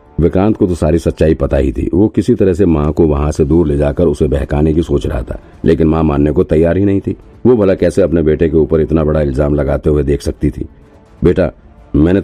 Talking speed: 245 wpm